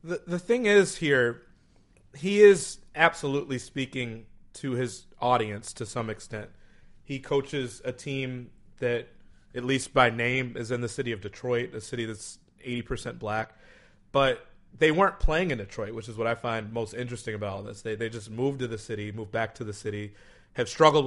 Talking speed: 185 wpm